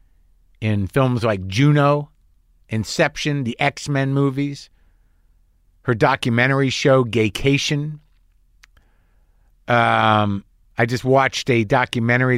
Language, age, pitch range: English, 50-69, 95-145 Hz